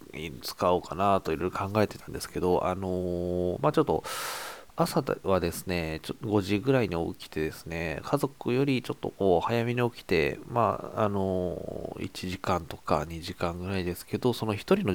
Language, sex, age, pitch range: Japanese, male, 20-39, 85-115 Hz